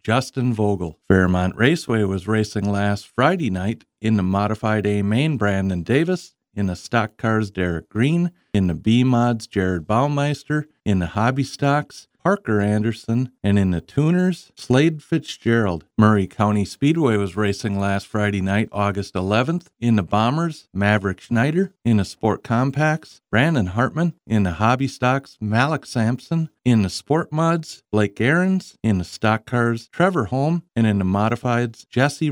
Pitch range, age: 105-140 Hz, 50-69